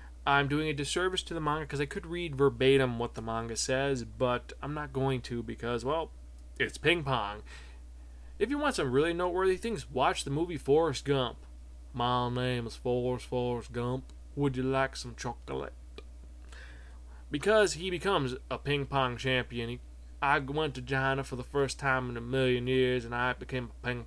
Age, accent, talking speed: 20-39, American, 180 wpm